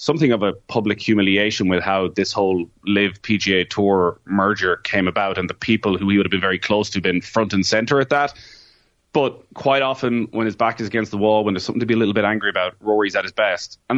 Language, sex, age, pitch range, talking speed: English, male, 20-39, 95-115 Hz, 245 wpm